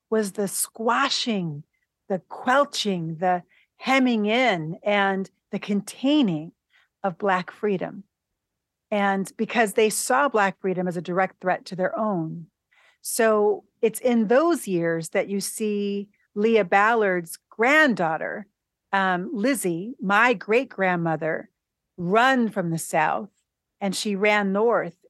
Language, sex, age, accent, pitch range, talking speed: English, female, 40-59, American, 180-220 Hz, 120 wpm